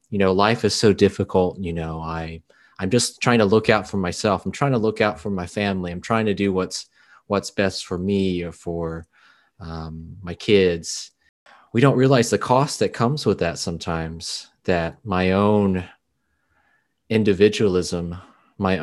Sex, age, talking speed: male, 30-49, 170 wpm